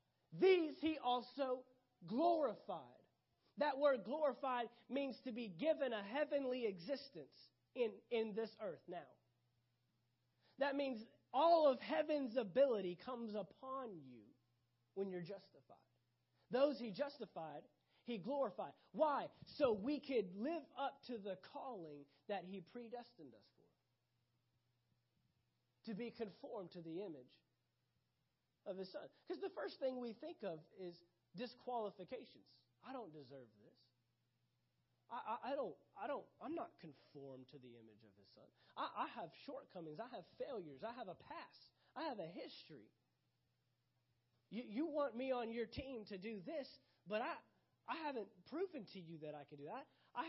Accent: American